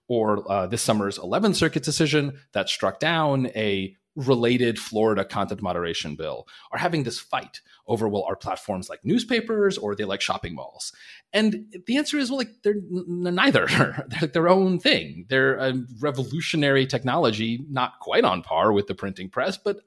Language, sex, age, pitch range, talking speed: English, male, 30-49, 115-175 Hz, 170 wpm